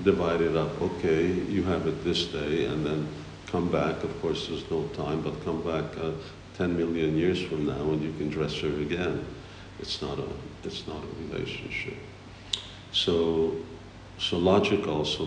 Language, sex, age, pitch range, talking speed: English, male, 50-69, 75-95 Hz, 175 wpm